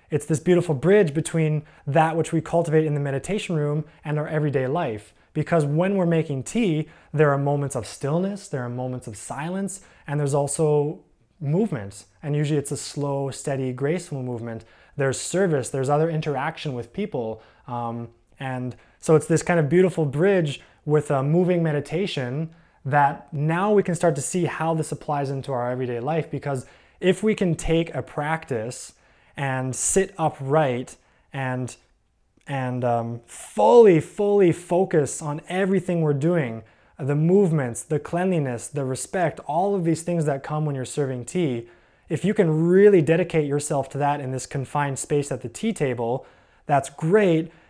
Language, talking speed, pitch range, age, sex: English, 165 wpm, 135-170 Hz, 20-39, male